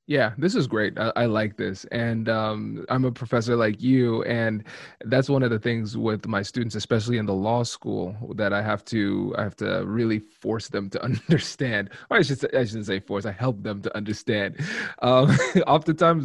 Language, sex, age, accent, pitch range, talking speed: English, male, 20-39, American, 110-135 Hz, 205 wpm